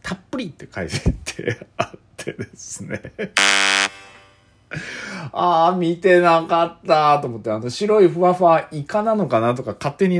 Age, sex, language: 40-59, male, Japanese